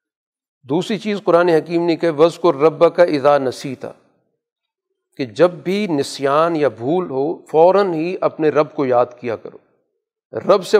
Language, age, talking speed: Urdu, 40-59, 160 wpm